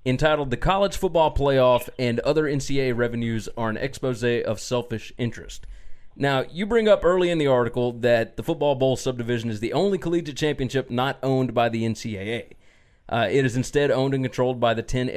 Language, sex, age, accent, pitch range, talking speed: English, male, 30-49, American, 120-145 Hz, 190 wpm